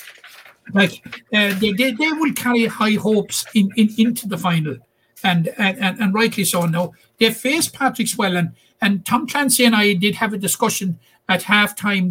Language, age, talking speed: English, 60-79, 185 wpm